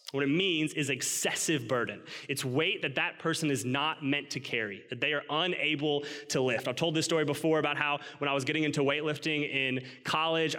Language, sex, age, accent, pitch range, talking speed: English, male, 20-39, American, 135-170 Hz, 210 wpm